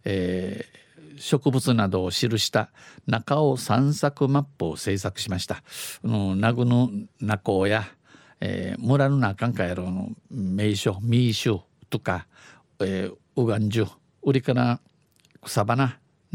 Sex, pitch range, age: male, 100-140 Hz, 50-69